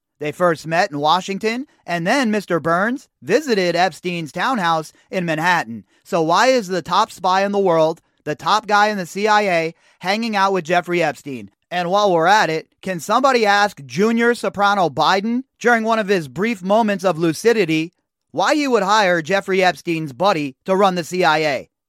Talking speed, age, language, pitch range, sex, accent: 175 wpm, 30-49, English, 170-220 Hz, male, American